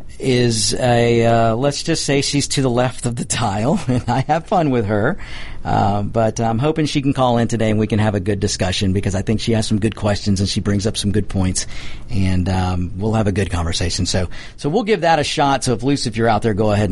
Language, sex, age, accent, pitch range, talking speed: English, male, 50-69, American, 105-140 Hz, 260 wpm